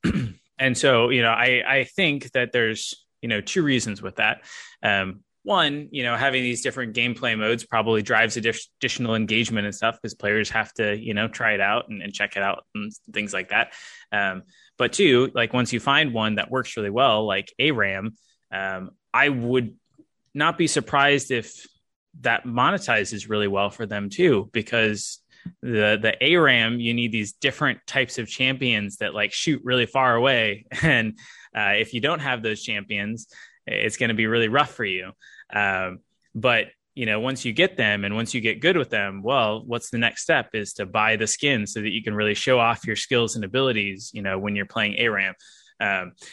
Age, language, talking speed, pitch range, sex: 20-39, English, 195 wpm, 105-130 Hz, male